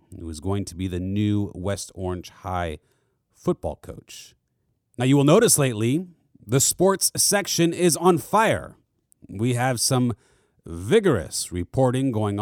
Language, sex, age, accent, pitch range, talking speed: English, male, 30-49, American, 105-145 Hz, 140 wpm